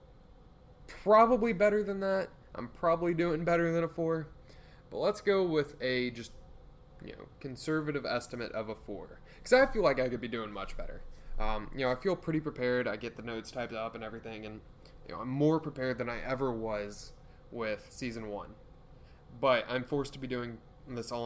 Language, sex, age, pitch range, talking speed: English, male, 10-29, 115-150 Hz, 200 wpm